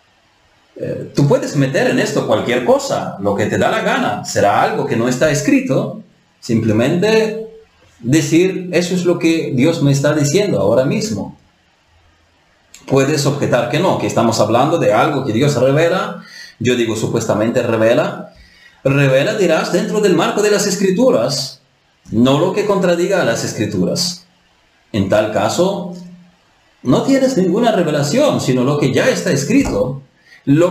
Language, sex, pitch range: Spanish, male, 125-185 Hz